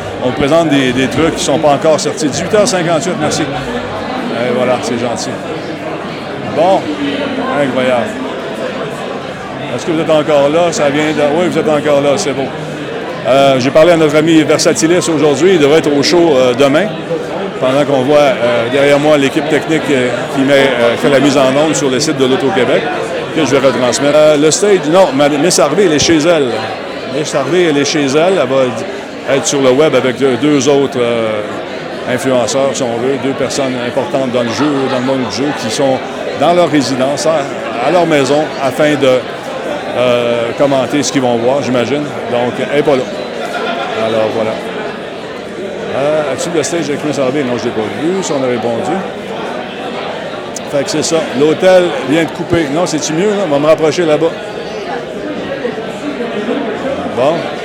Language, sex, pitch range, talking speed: French, male, 130-155 Hz, 185 wpm